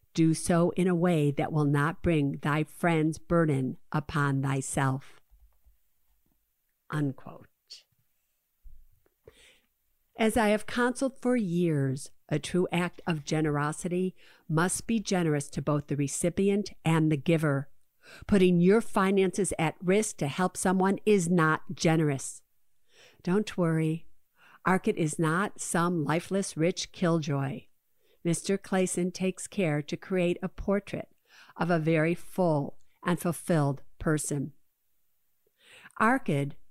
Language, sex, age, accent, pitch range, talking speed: English, female, 50-69, American, 150-190 Hz, 120 wpm